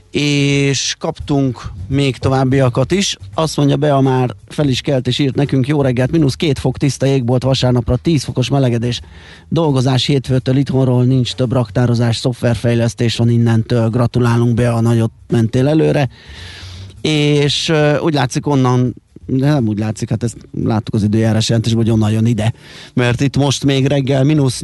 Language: Hungarian